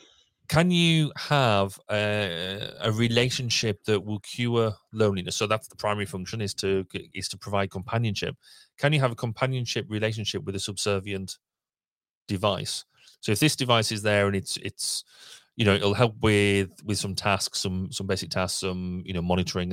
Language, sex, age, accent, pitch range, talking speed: English, male, 30-49, British, 95-115 Hz, 170 wpm